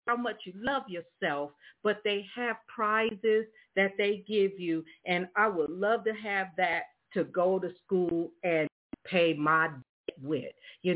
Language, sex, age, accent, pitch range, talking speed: English, female, 50-69, American, 180-250 Hz, 160 wpm